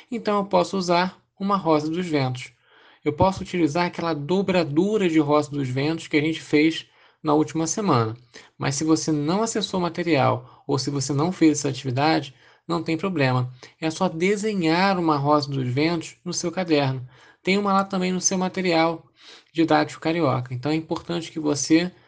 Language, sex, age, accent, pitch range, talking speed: Portuguese, male, 20-39, Brazilian, 145-175 Hz, 175 wpm